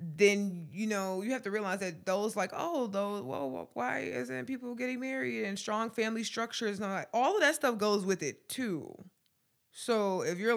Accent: American